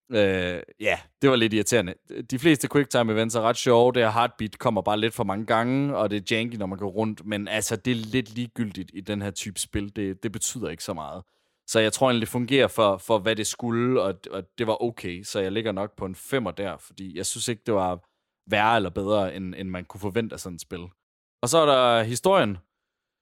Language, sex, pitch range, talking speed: Danish, male, 100-120 Hz, 245 wpm